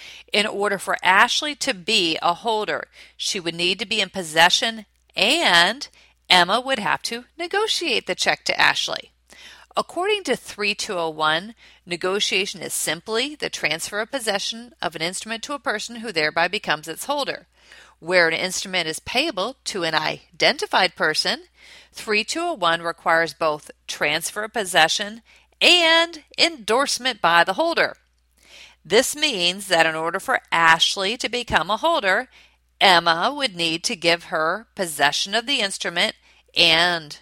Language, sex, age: English, female, 40-59